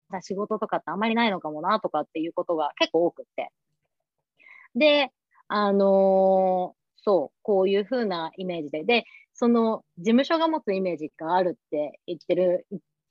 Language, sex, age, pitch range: Japanese, female, 30-49, 165-235 Hz